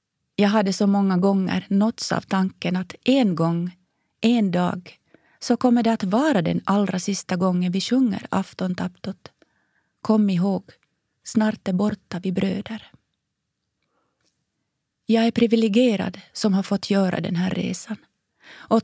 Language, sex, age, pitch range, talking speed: Swedish, female, 30-49, 185-225 Hz, 140 wpm